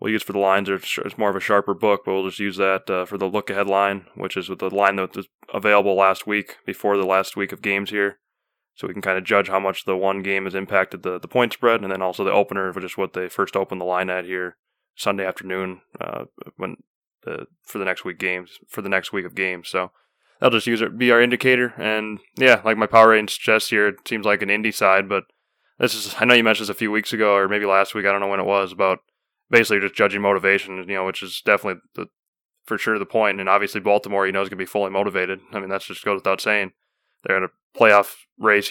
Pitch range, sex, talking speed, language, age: 95-105 Hz, male, 265 wpm, English, 20-39